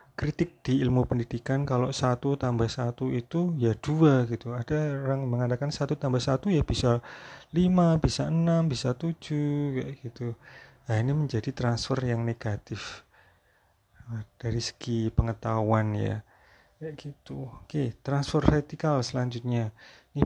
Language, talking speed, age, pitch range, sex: Indonesian, 130 wpm, 30-49, 115-135 Hz, male